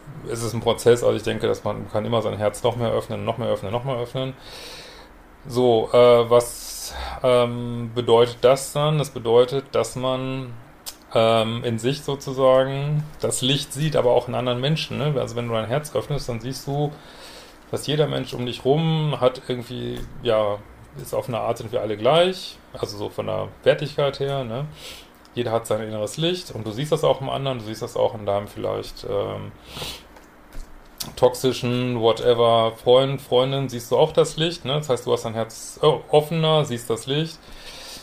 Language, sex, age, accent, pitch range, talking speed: German, male, 30-49, German, 115-135 Hz, 185 wpm